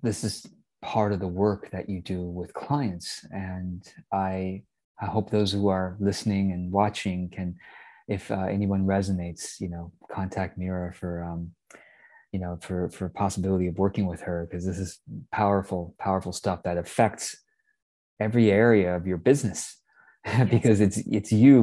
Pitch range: 90-105 Hz